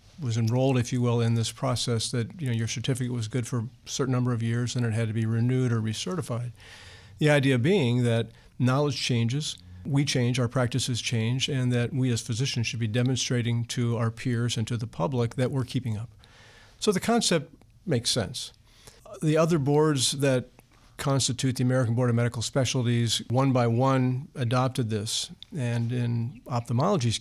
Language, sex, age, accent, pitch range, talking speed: English, male, 50-69, American, 115-130 Hz, 185 wpm